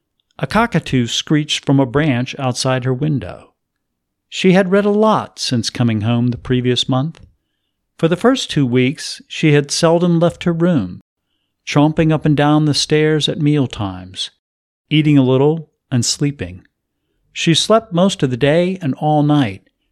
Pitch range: 125-180 Hz